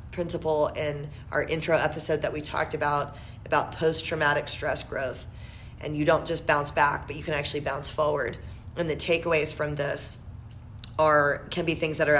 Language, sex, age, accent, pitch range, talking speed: English, female, 20-39, American, 150-180 Hz, 175 wpm